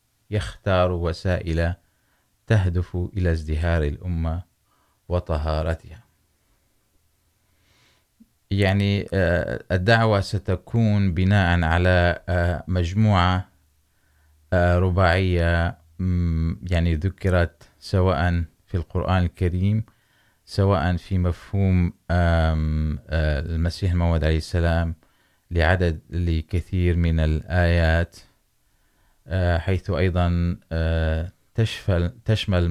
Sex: male